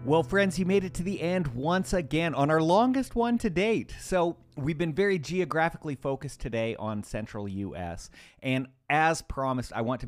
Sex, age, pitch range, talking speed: male, 30-49, 115-165 Hz, 190 wpm